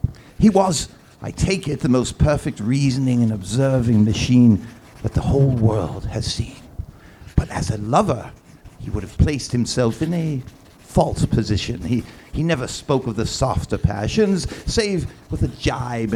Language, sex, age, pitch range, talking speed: English, male, 60-79, 115-155 Hz, 160 wpm